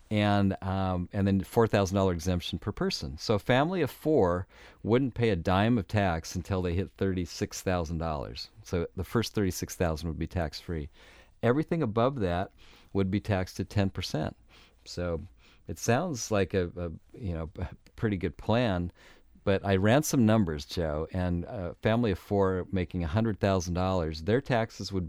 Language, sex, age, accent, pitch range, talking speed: English, male, 40-59, American, 85-110 Hz, 185 wpm